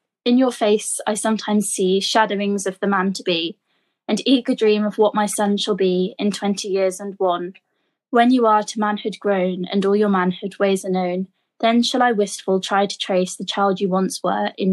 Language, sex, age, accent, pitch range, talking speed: English, female, 20-39, British, 195-230 Hz, 205 wpm